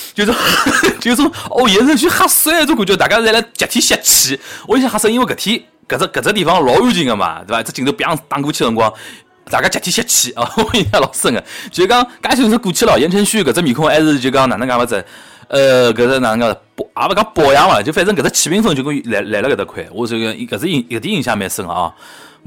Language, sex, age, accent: Chinese, male, 20-39, native